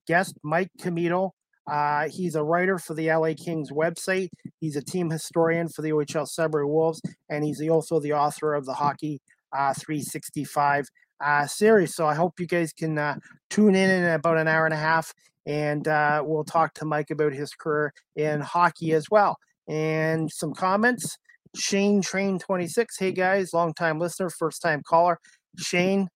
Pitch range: 150-170 Hz